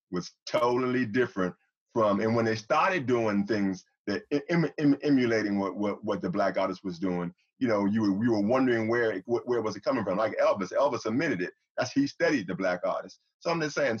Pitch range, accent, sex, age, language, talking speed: 100-120 Hz, American, male, 30-49, English, 220 wpm